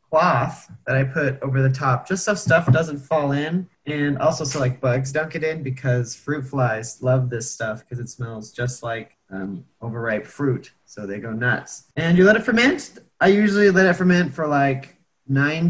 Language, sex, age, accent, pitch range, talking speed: English, male, 30-49, American, 130-165 Hz, 200 wpm